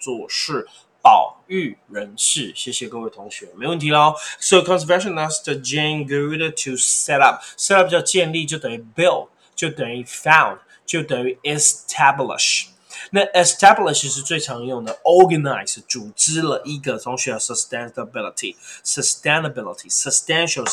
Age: 20-39